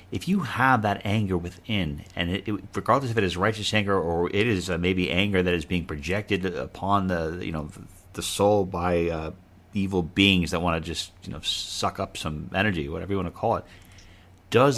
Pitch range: 85-95 Hz